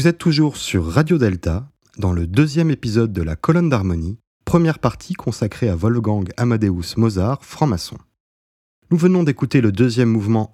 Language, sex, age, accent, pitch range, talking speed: French, male, 30-49, French, 100-135 Hz, 160 wpm